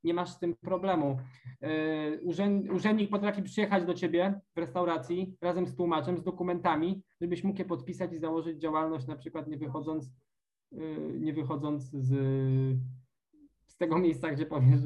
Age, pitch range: 20-39, 135-170 Hz